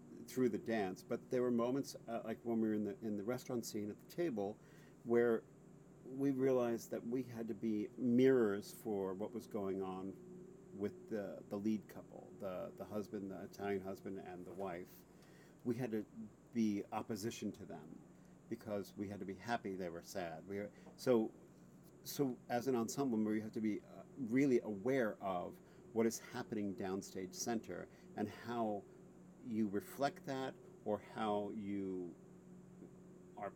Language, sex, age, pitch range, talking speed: English, male, 50-69, 100-125 Hz, 170 wpm